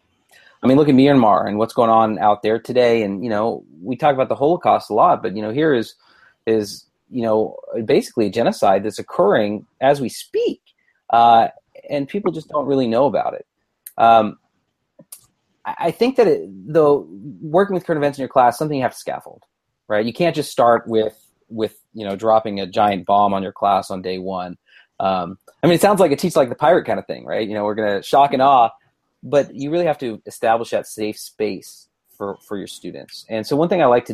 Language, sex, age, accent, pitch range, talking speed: English, male, 30-49, American, 105-140 Hz, 225 wpm